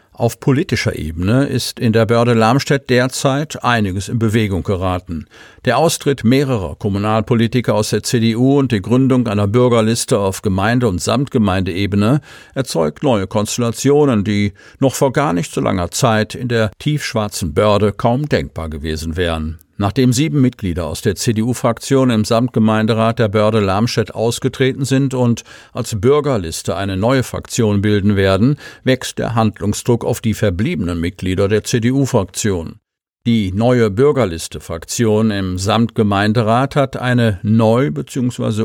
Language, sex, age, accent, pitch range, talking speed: German, male, 50-69, German, 105-125 Hz, 135 wpm